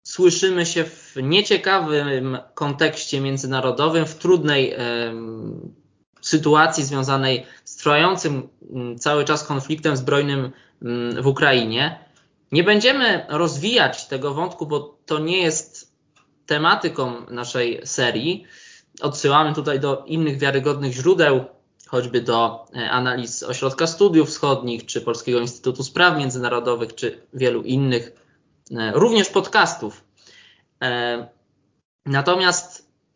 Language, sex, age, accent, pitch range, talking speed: Polish, male, 20-39, native, 125-160 Hz, 95 wpm